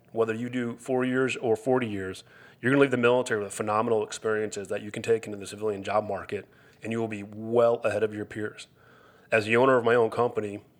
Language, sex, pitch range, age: English, male, 105-120 Hz, 30-49